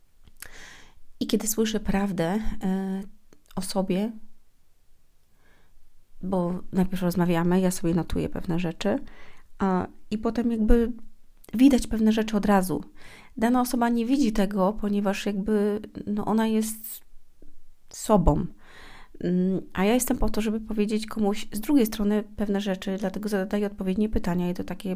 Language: Polish